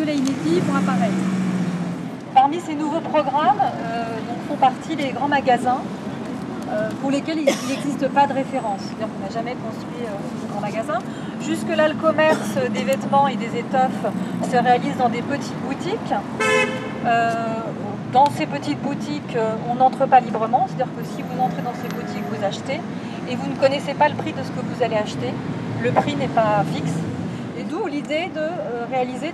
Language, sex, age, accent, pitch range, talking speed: French, female, 30-49, French, 220-275 Hz, 175 wpm